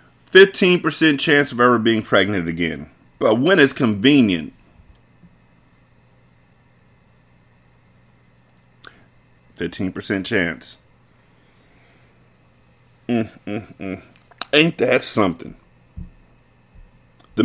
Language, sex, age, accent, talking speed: English, male, 40-59, American, 70 wpm